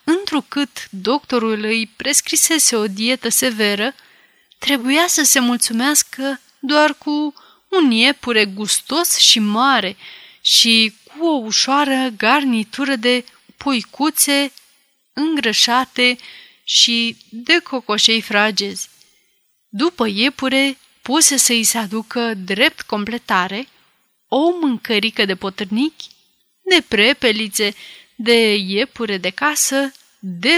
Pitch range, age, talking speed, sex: 220-290 Hz, 30-49, 95 wpm, female